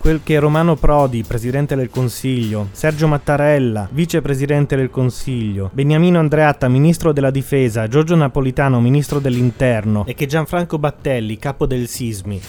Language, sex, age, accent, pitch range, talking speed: Italian, male, 30-49, native, 115-145 Hz, 135 wpm